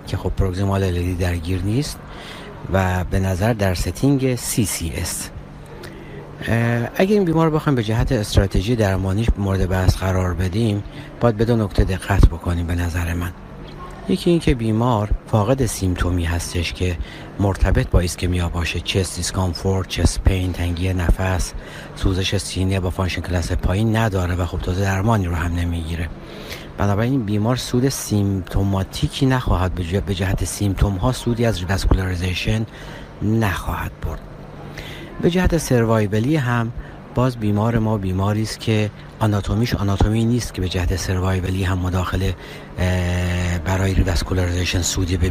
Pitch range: 90-110 Hz